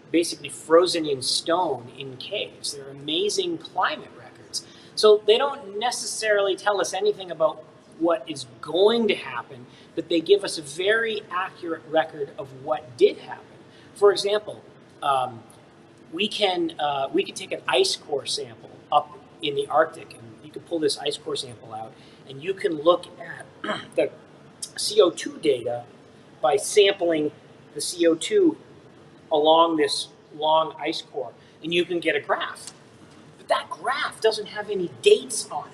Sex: male